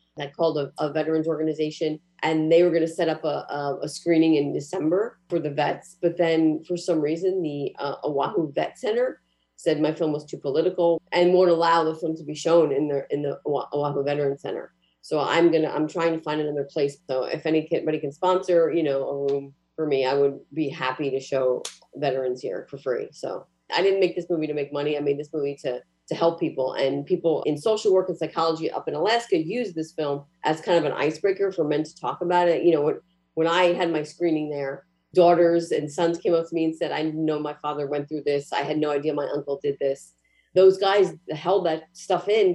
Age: 30-49